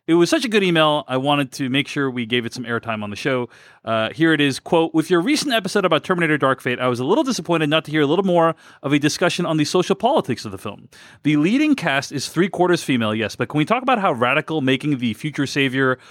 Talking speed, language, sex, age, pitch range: 270 wpm, English, male, 30-49, 130-170 Hz